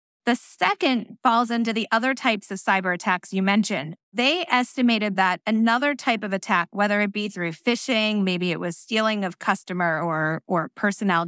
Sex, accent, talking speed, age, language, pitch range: female, American, 175 wpm, 20-39, English, 195-245 Hz